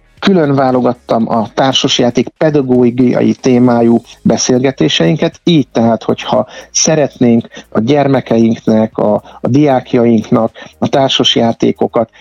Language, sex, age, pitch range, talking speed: Hungarian, male, 60-79, 115-135 Hz, 90 wpm